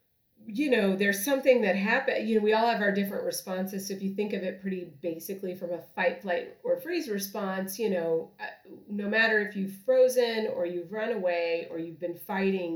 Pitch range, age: 170-205 Hz, 30-49